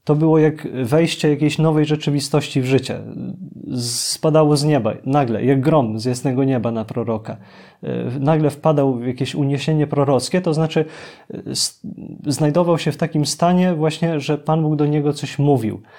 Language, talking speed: Polish, 155 wpm